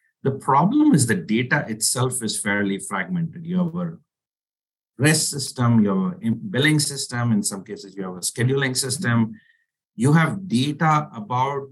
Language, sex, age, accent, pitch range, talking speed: English, male, 50-69, Indian, 105-150 Hz, 160 wpm